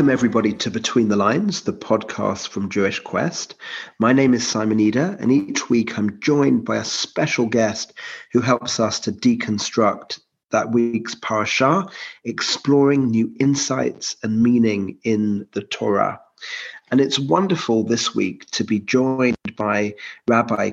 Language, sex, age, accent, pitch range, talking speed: English, male, 30-49, British, 115-135 Hz, 150 wpm